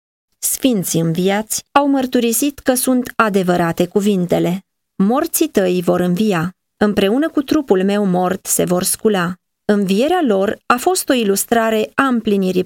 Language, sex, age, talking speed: Romanian, female, 30-49, 135 wpm